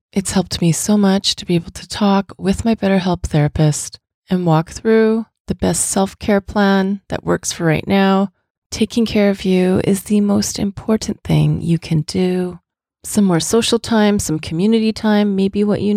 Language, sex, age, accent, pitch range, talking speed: English, female, 30-49, American, 170-210 Hz, 180 wpm